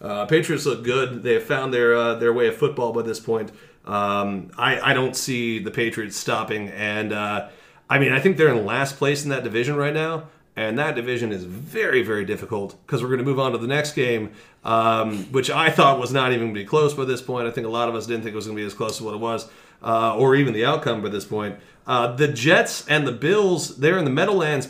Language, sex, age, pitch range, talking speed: English, male, 30-49, 115-150 Hz, 260 wpm